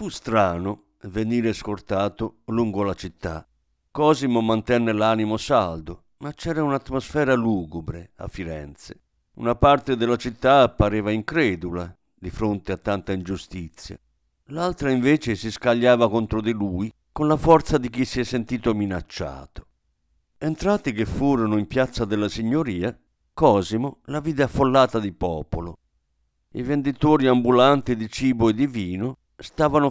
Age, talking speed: 50-69, 130 wpm